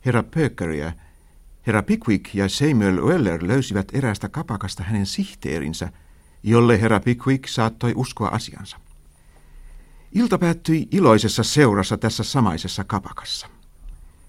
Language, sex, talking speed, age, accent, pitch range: Finnish, male, 105 wpm, 60-79, native, 80-125 Hz